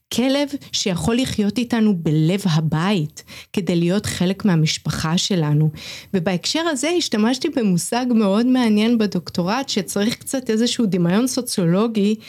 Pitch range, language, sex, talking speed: 180-240 Hz, Hebrew, female, 110 wpm